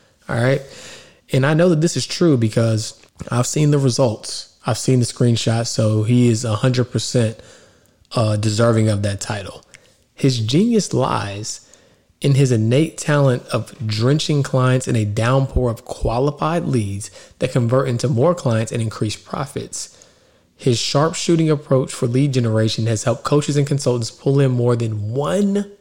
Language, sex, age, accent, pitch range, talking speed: English, male, 20-39, American, 115-145 Hz, 155 wpm